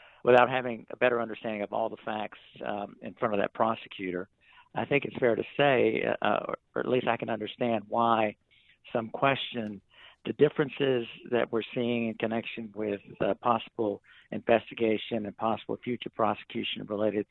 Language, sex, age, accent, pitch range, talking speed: English, male, 60-79, American, 110-130 Hz, 165 wpm